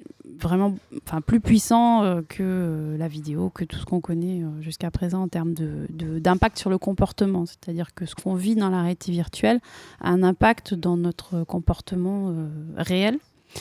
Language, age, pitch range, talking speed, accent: French, 30-49, 170-205 Hz, 170 wpm, French